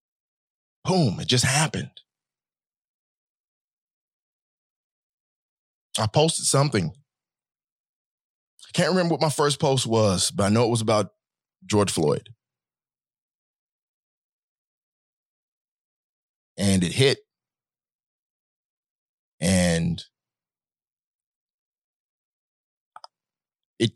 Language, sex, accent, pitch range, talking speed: English, male, American, 100-150 Hz, 70 wpm